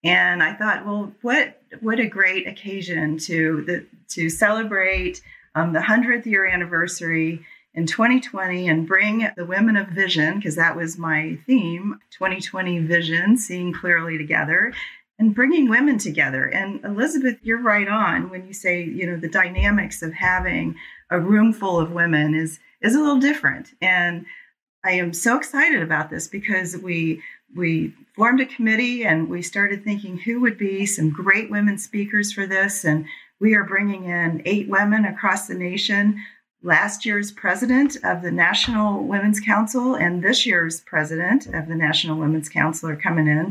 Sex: female